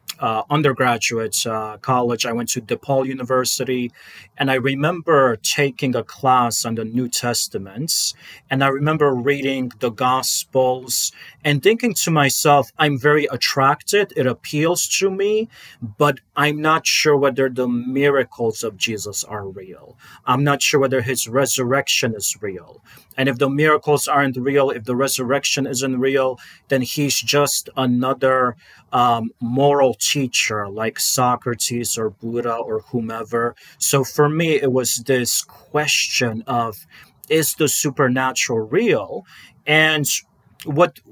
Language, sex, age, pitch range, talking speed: English, male, 30-49, 120-140 Hz, 135 wpm